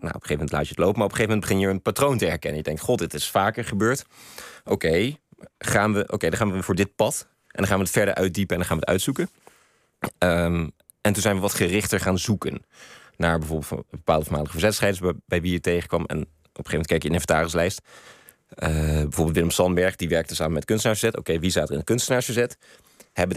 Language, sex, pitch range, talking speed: Dutch, male, 85-105 Hz, 250 wpm